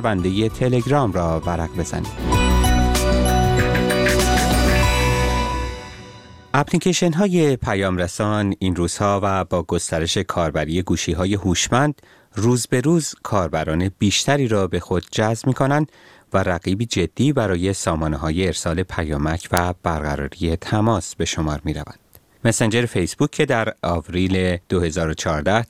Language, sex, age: Persian, male, 30-49